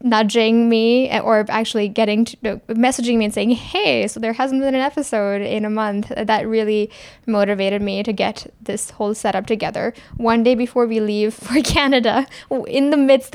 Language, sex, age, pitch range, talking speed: English, female, 10-29, 210-235 Hz, 180 wpm